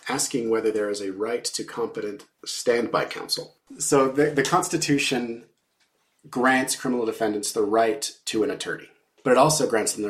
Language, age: English, 30-49